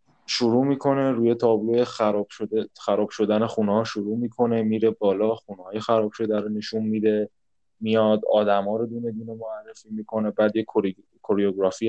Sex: male